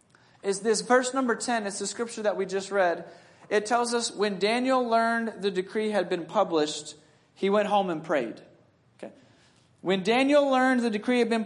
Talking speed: 190 wpm